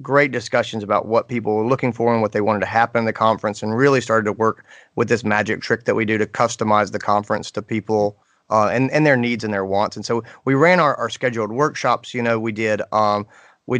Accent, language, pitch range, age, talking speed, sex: American, English, 105-120 Hz, 30-49, 250 wpm, male